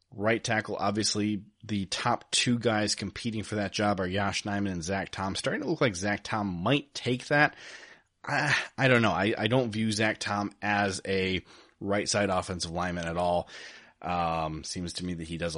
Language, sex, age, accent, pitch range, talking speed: English, male, 30-49, American, 95-115 Hz, 195 wpm